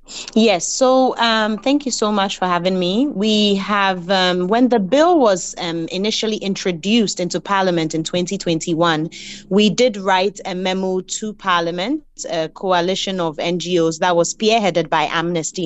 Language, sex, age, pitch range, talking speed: English, female, 30-49, 175-210 Hz, 155 wpm